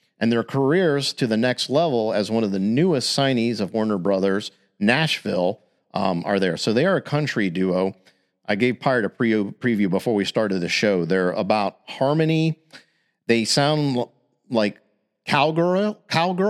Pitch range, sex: 95-130 Hz, male